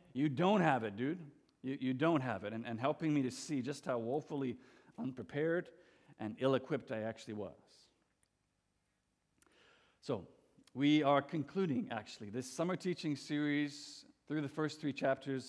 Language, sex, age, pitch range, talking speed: English, male, 50-69, 125-160 Hz, 150 wpm